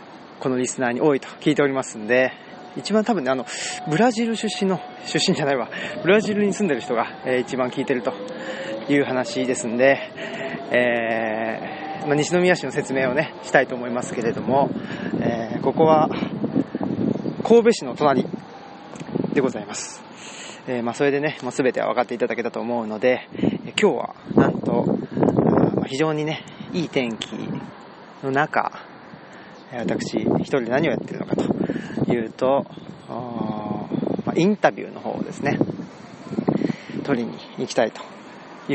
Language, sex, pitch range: Japanese, male, 120-180 Hz